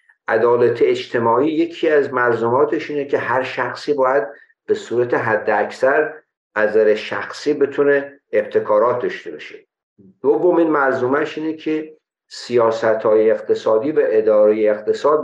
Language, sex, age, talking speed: Persian, male, 50-69, 120 wpm